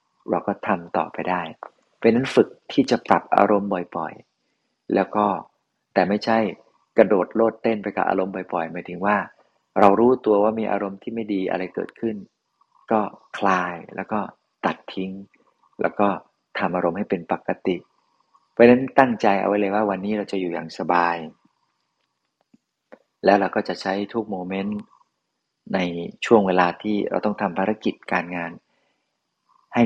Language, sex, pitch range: Thai, male, 90-105 Hz